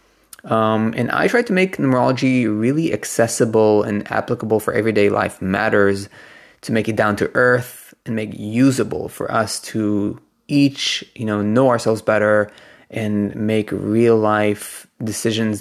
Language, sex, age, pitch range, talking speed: English, male, 20-39, 105-120 Hz, 145 wpm